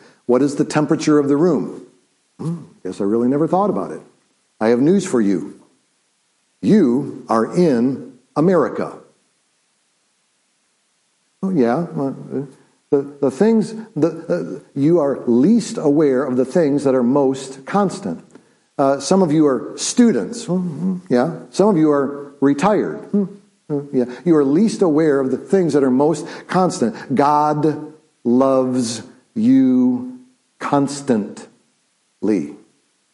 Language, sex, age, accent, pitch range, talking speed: English, male, 50-69, American, 125-155 Hz, 130 wpm